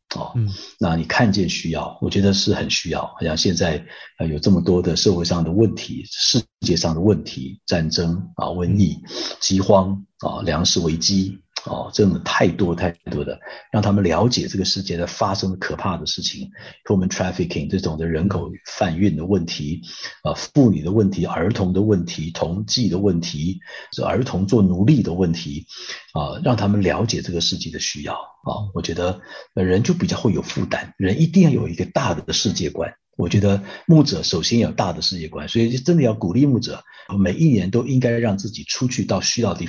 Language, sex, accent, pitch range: Chinese, male, native, 90-110 Hz